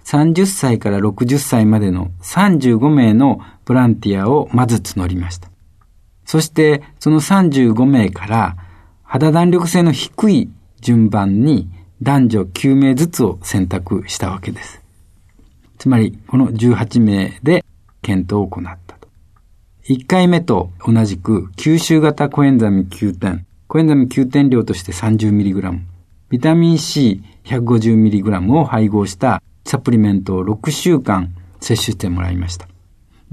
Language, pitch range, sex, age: Japanese, 95-135 Hz, male, 50-69